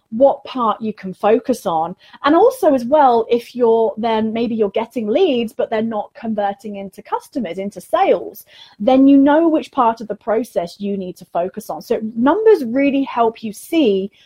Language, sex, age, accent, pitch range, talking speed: English, female, 30-49, British, 210-260 Hz, 185 wpm